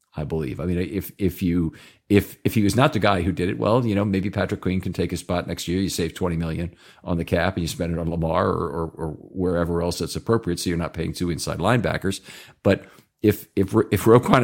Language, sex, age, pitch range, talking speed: English, male, 50-69, 85-105 Hz, 255 wpm